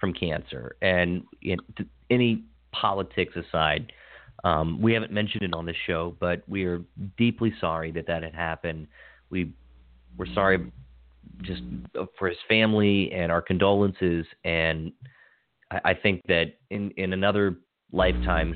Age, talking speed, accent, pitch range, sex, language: 40-59, 140 wpm, American, 85-105 Hz, male, English